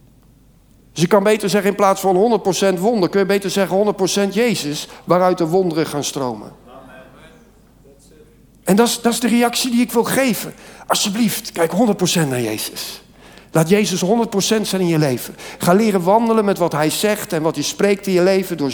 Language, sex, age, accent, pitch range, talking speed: Dutch, male, 50-69, Dutch, 165-215 Hz, 185 wpm